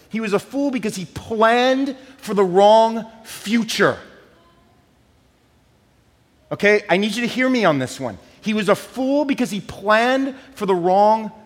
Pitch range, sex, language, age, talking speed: 140-210 Hz, male, English, 30-49, 160 wpm